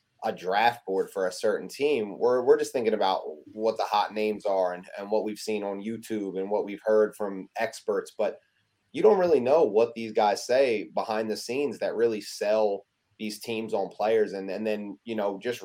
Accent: American